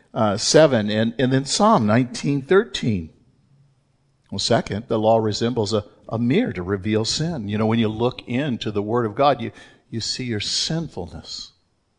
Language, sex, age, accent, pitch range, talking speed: English, male, 50-69, American, 110-150 Hz, 165 wpm